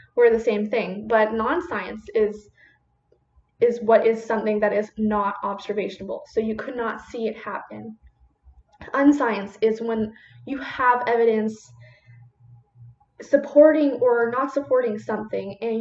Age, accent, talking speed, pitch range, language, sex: 10-29, American, 125 wpm, 205-240 Hz, English, female